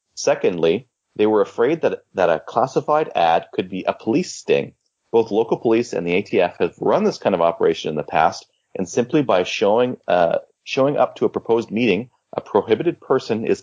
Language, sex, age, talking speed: English, male, 30-49, 195 wpm